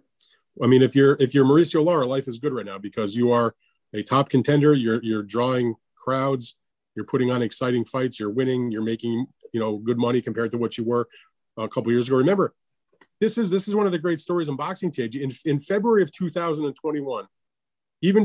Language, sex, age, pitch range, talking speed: English, male, 30-49, 115-135 Hz, 215 wpm